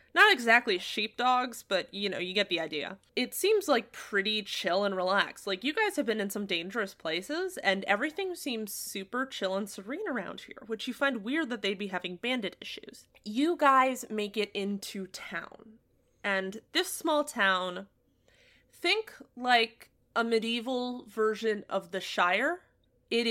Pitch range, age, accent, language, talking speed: 190-235 Hz, 20-39, American, English, 165 wpm